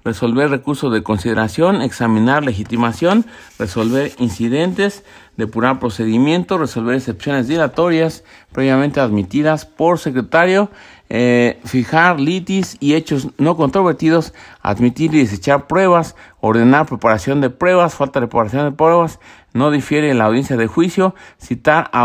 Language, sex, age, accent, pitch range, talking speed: Spanish, male, 50-69, Mexican, 120-165 Hz, 120 wpm